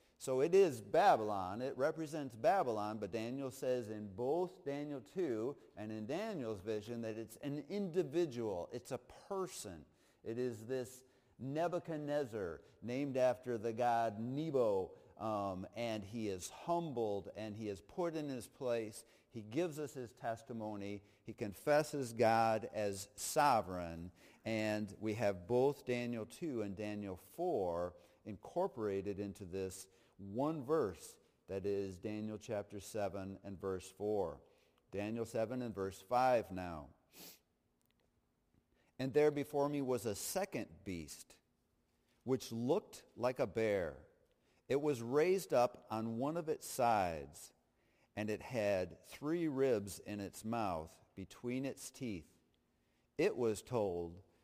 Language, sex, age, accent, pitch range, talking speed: English, male, 50-69, American, 100-130 Hz, 130 wpm